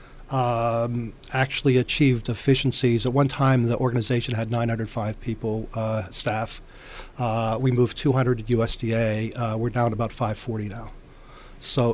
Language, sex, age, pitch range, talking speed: English, male, 40-59, 115-130 Hz, 135 wpm